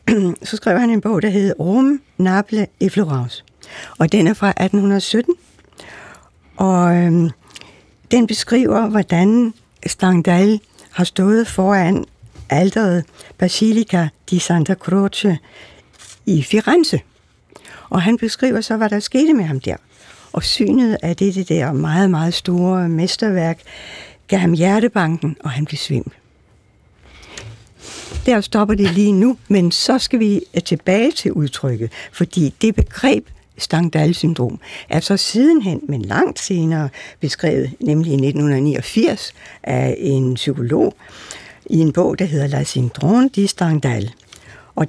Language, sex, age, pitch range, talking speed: Danish, female, 60-79, 155-215 Hz, 130 wpm